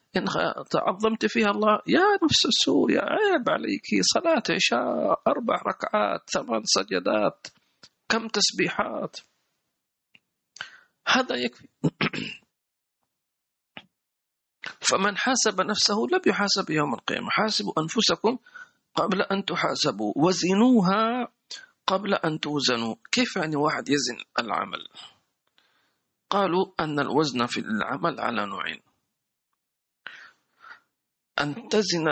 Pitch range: 155-220 Hz